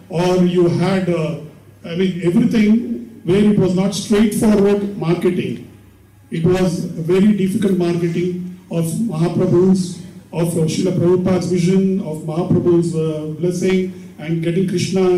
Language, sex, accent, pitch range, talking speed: English, male, Indian, 165-195 Hz, 125 wpm